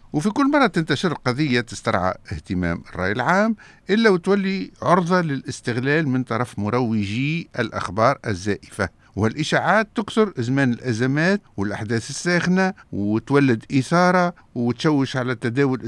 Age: 60-79